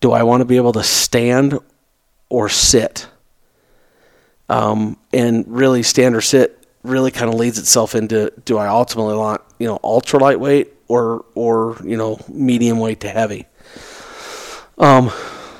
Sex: male